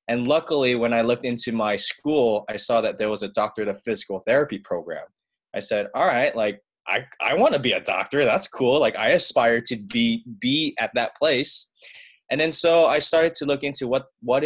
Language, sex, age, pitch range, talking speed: English, male, 20-39, 110-140 Hz, 215 wpm